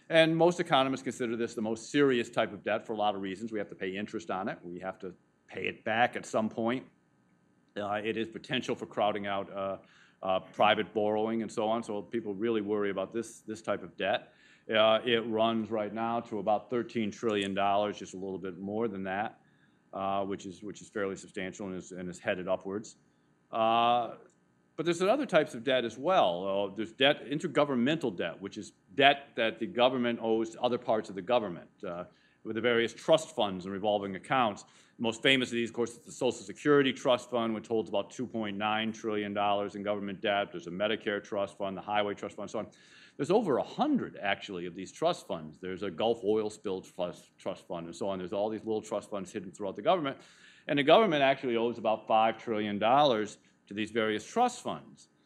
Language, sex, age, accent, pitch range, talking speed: English, male, 40-59, American, 100-115 Hz, 210 wpm